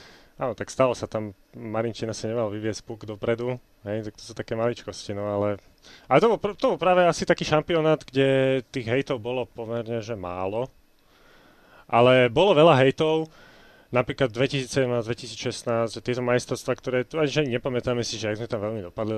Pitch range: 110-140 Hz